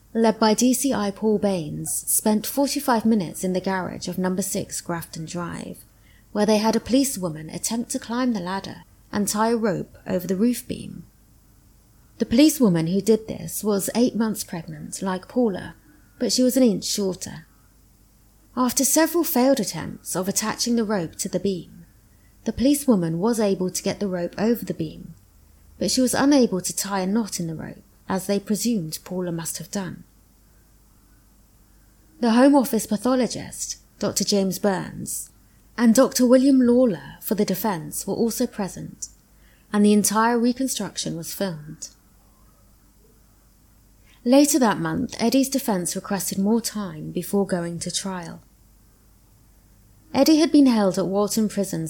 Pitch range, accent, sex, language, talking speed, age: 165-230 Hz, British, female, English, 155 wpm, 30-49